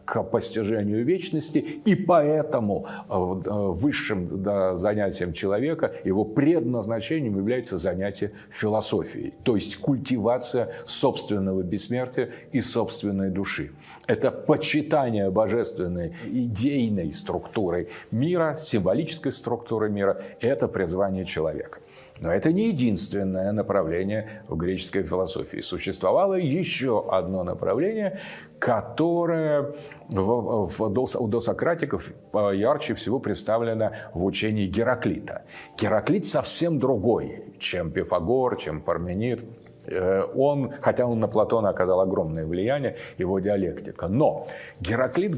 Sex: male